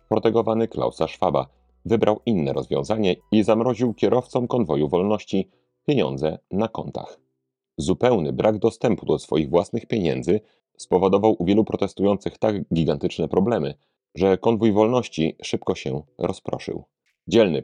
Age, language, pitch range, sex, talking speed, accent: 40-59, Polish, 80-110 Hz, male, 120 wpm, native